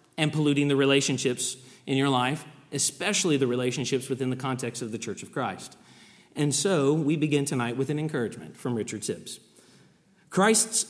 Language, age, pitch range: English, 40-59, 130-165 Hz